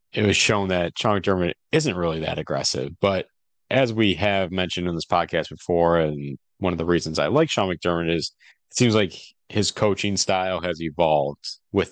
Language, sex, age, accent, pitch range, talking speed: English, male, 30-49, American, 90-105 Hz, 190 wpm